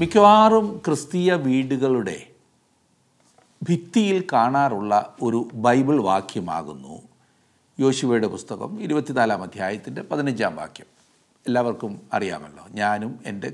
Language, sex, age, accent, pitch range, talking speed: Malayalam, male, 60-79, native, 125-170 Hz, 80 wpm